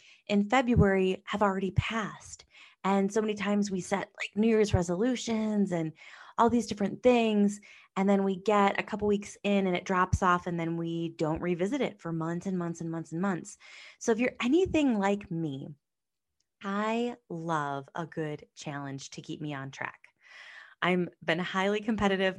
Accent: American